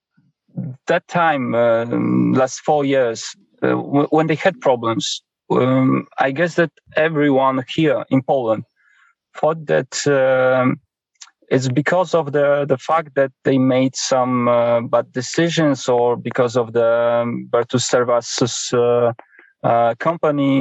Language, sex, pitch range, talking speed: English, male, 120-150 Hz, 135 wpm